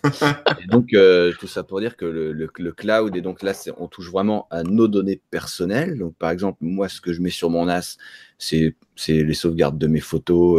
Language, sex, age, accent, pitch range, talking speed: French, male, 30-49, French, 85-110 Hz, 230 wpm